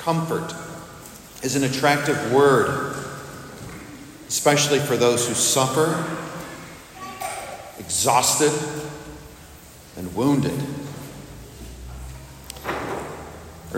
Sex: male